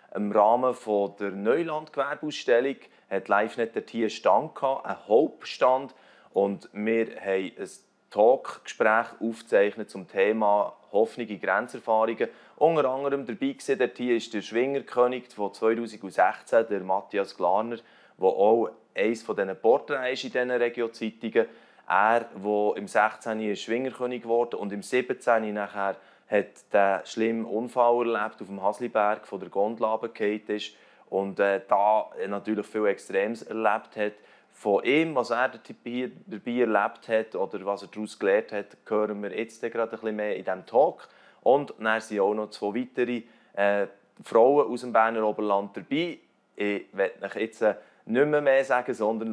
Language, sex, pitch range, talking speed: German, male, 100-120 Hz, 145 wpm